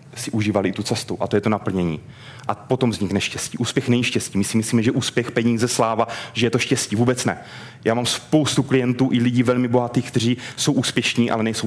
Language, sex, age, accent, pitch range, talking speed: Czech, male, 30-49, native, 110-145 Hz, 220 wpm